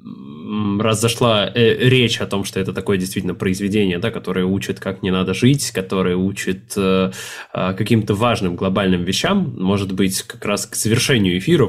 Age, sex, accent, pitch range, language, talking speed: 20-39, male, native, 95-115 Hz, Russian, 165 wpm